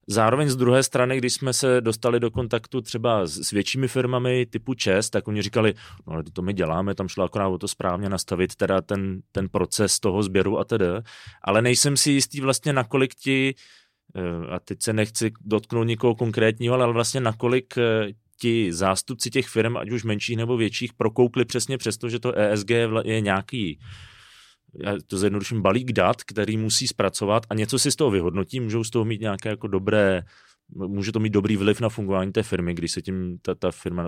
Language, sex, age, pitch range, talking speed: Czech, male, 30-49, 100-120 Hz, 190 wpm